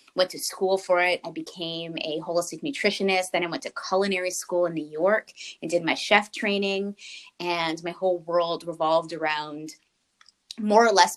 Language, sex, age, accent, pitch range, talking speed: English, female, 20-39, American, 170-205 Hz, 175 wpm